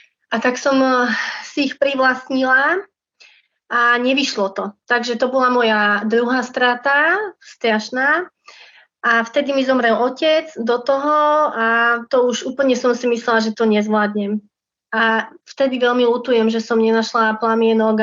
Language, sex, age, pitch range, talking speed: Slovak, female, 20-39, 225-260 Hz, 135 wpm